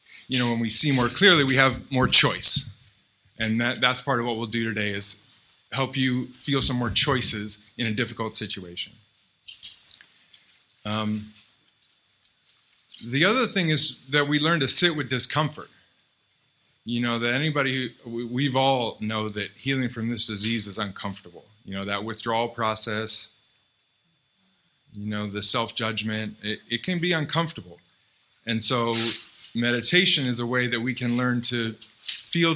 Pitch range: 105-130 Hz